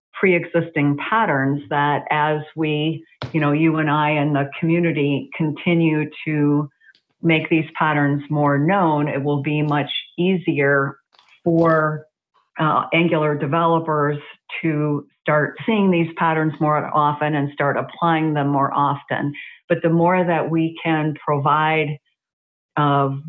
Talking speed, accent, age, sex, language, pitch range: 130 wpm, American, 50-69, female, English, 145-170 Hz